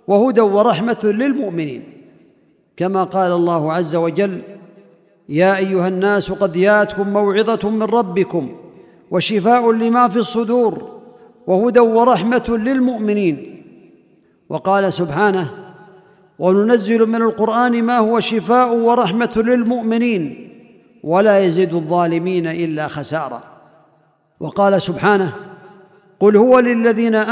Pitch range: 185-230 Hz